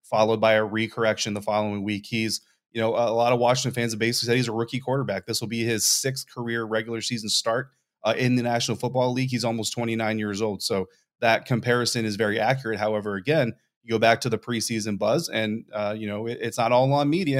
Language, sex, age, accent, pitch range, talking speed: English, male, 30-49, American, 105-120 Hz, 230 wpm